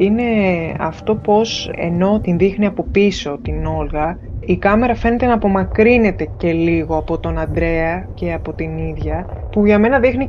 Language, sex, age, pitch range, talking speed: Greek, female, 20-39, 160-205 Hz, 165 wpm